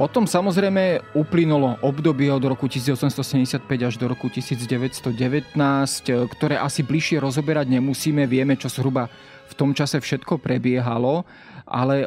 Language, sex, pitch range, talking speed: Slovak, male, 130-155 Hz, 125 wpm